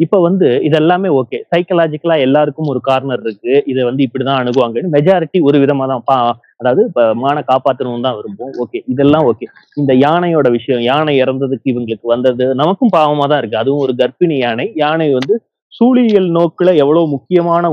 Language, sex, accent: Tamil, male, native